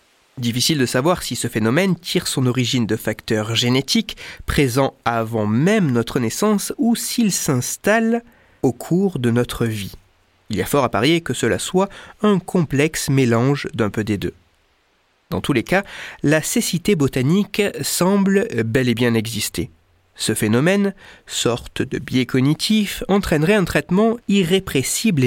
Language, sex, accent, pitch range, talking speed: French, male, French, 115-190 Hz, 150 wpm